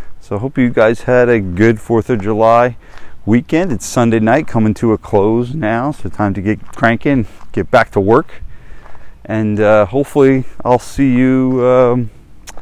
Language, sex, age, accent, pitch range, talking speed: English, male, 30-49, American, 100-125 Hz, 170 wpm